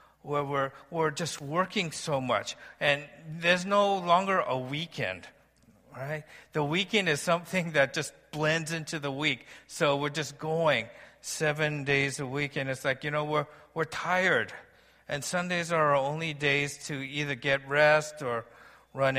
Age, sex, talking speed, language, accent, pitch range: 50-69, male, 165 wpm, English, American, 135-165 Hz